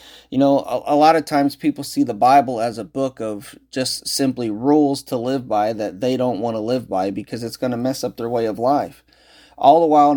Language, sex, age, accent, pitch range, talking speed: English, male, 30-49, American, 125-150 Hz, 240 wpm